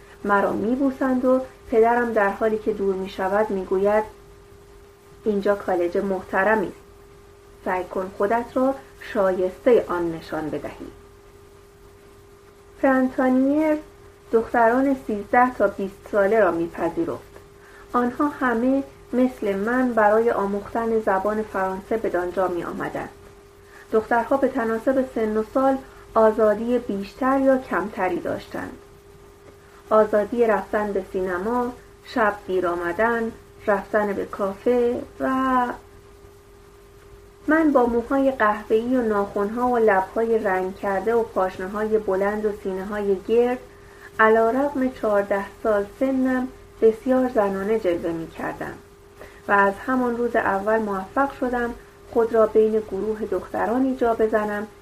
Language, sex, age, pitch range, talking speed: Persian, female, 30-49, 195-245 Hz, 110 wpm